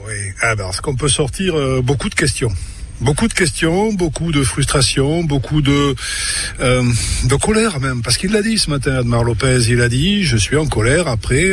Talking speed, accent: 200 wpm, French